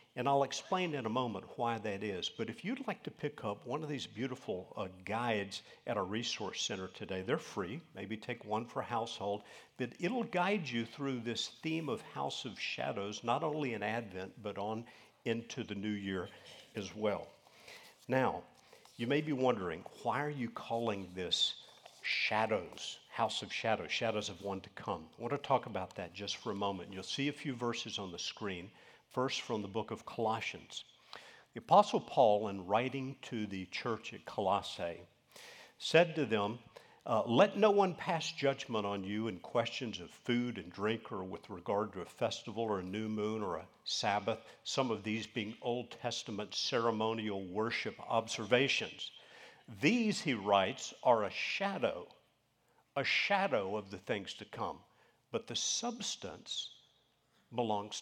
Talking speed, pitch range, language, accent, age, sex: 170 wpm, 105-140 Hz, English, American, 50-69, male